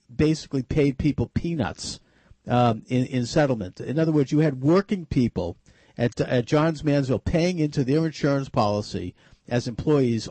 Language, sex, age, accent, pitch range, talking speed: English, male, 50-69, American, 120-160 Hz, 150 wpm